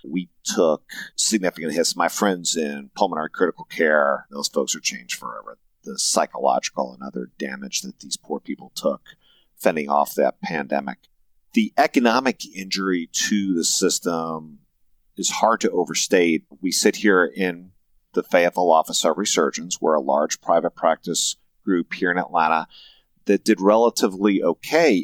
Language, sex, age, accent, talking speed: English, male, 40-59, American, 145 wpm